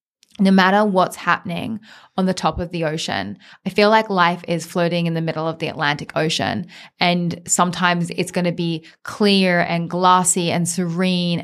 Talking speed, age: 175 wpm, 10-29